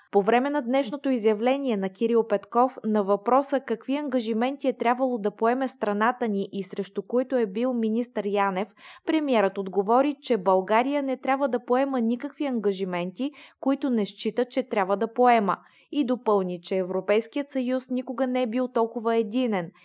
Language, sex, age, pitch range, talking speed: Bulgarian, female, 20-39, 205-255 Hz, 160 wpm